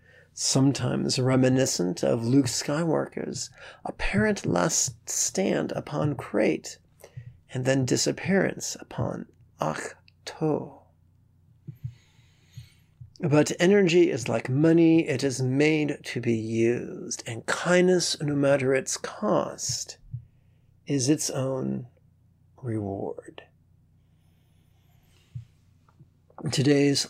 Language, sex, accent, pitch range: English, male, American, 120-150 Hz